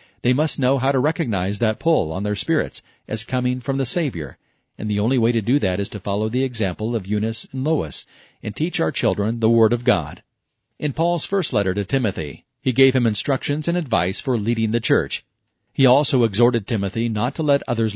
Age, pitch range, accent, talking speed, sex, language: 40-59, 110-135 Hz, American, 215 wpm, male, English